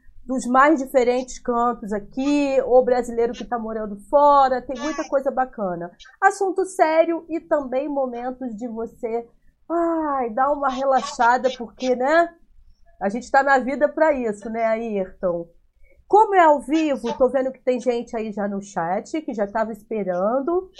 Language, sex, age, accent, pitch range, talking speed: Portuguese, female, 30-49, Brazilian, 230-285 Hz, 155 wpm